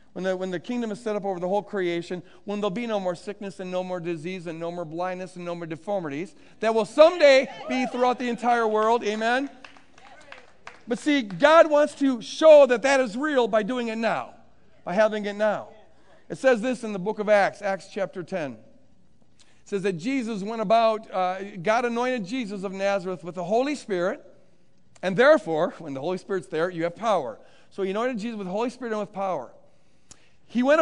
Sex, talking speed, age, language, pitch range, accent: male, 205 wpm, 50-69, English, 195-250 Hz, American